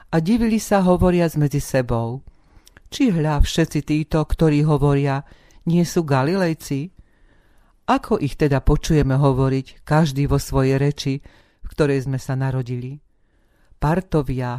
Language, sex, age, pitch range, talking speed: Slovak, female, 40-59, 135-165 Hz, 125 wpm